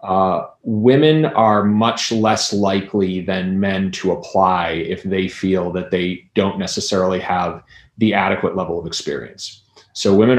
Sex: male